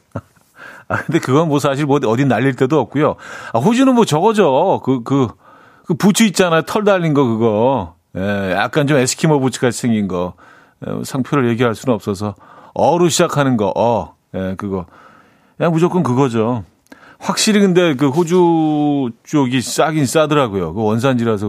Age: 40-59